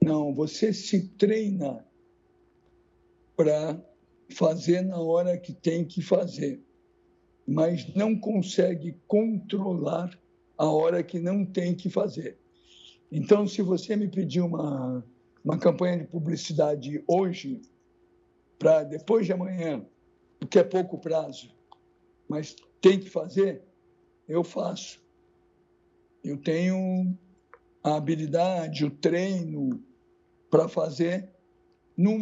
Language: Portuguese